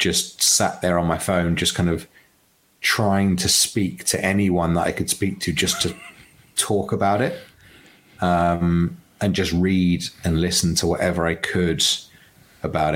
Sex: male